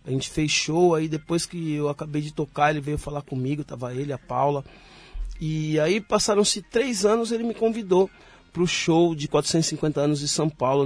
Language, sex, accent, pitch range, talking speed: Portuguese, male, Brazilian, 150-220 Hz, 200 wpm